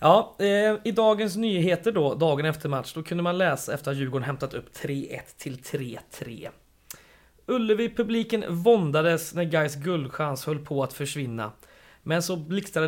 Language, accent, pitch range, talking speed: Swedish, native, 140-195 Hz, 150 wpm